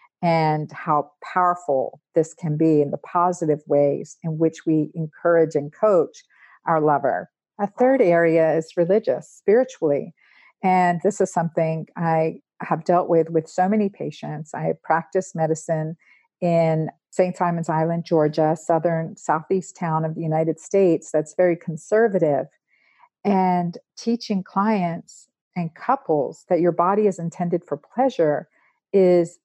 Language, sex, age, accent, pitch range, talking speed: English, female, 50-69, American, 160-195 Hz, 140 wpm